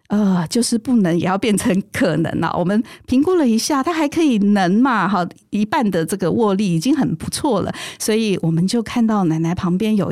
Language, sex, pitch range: Chinese, female, 170-225 Hz